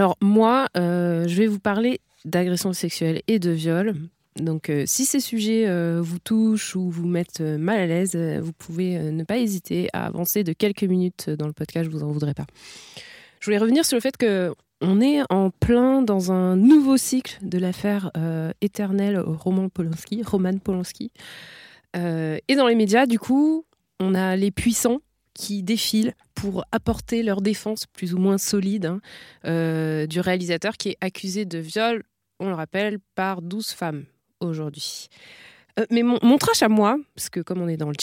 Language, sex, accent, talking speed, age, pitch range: French, female, French, 190 wpm, 20-39, 170-220 Hz